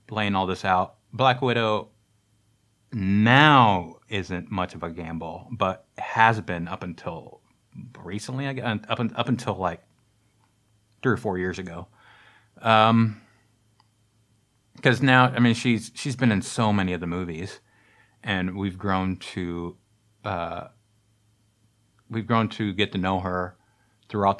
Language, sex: English, male